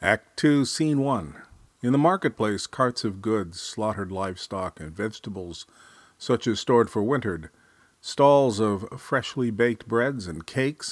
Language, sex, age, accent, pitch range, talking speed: English, male, 50-69, American, 100-130 Hz, 145 wpm